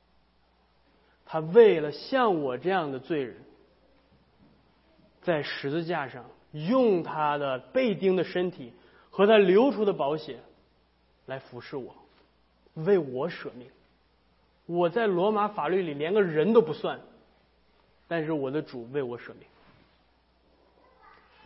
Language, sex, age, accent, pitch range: Chinese, male, 20-39, native, 120-195 Hz